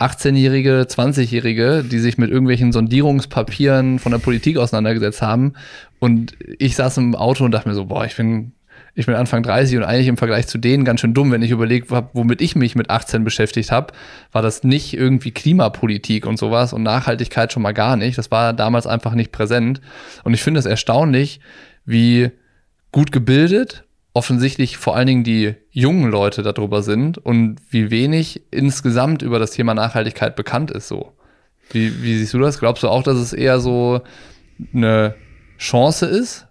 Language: German